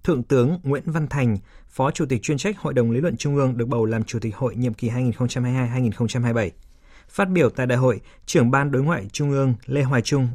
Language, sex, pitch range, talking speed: Vietnamese, male, 120-150 Hz, 225 wpm